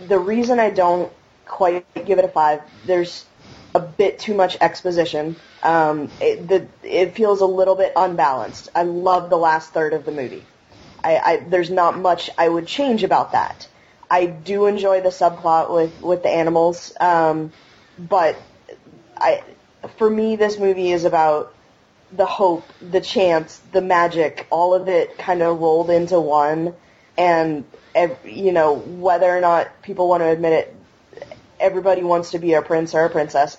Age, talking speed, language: 20-39, 170 wpm, English